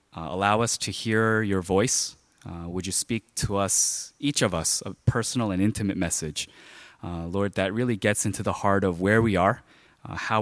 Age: 20-39